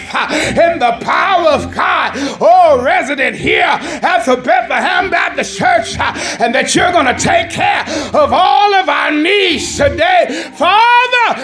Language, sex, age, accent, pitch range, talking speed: English, male, 40-59, American, 285-385 Hz, 140 wpm